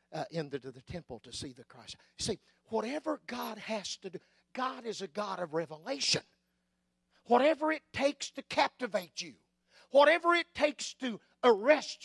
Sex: male